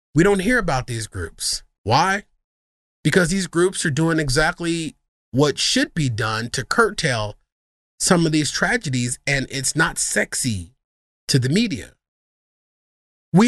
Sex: male